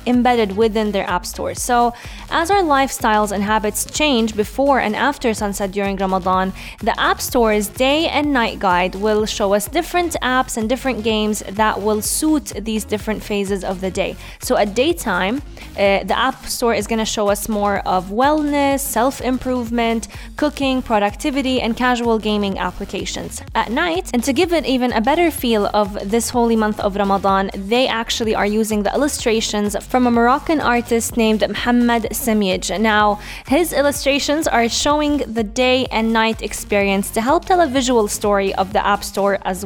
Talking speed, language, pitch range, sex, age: 175 wpm, English, 205-260 Hz, female, 10-29